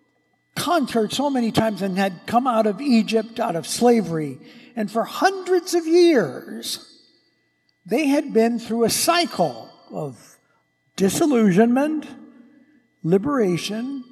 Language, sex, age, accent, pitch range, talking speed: English, male, 60-79, American, 200-280 Hz, 115 wpm